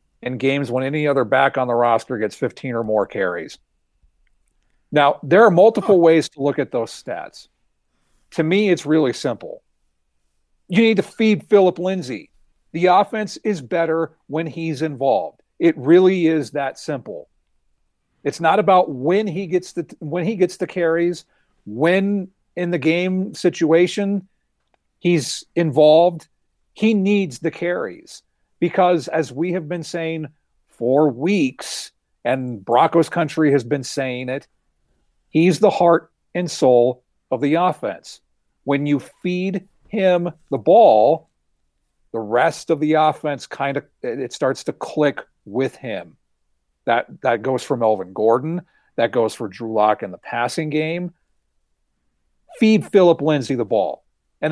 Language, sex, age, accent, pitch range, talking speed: English, male, 50-69, American, 125-180 Hz, 145 wpm